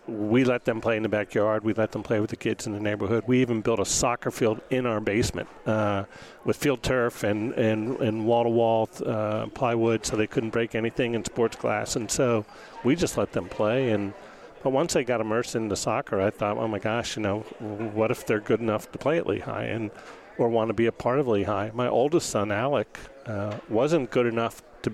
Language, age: English, 40-59